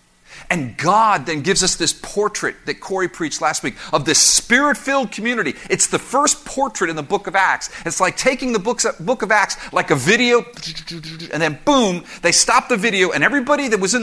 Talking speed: 200 wpm